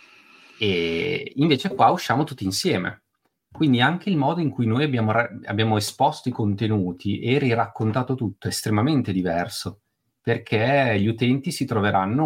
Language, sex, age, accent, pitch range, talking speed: Italian, male, 30-49, native, 100-125 Hz, 145 wpm